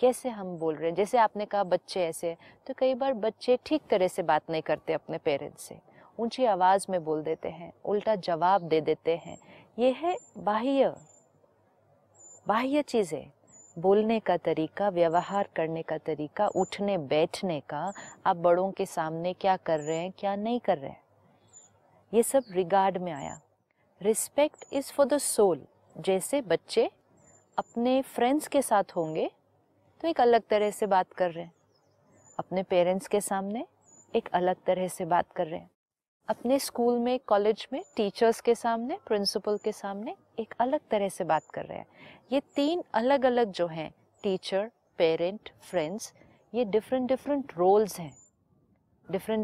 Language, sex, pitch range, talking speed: Hindi, female, 180-240 Hz, 160 wpm